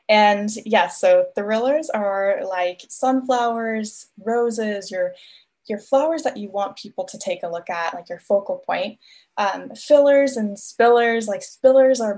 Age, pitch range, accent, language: 10-29, 190-255 Hz, American, English